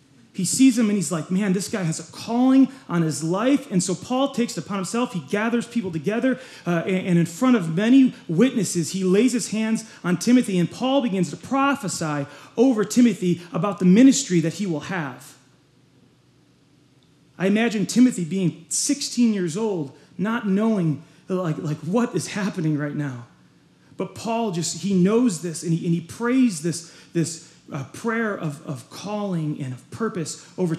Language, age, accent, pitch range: English, 30-49, American, 160-225 Hz